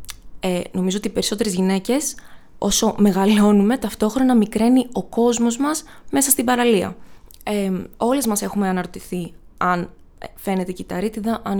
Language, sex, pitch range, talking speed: Greek, female, 195-245 Hz, 130 wpm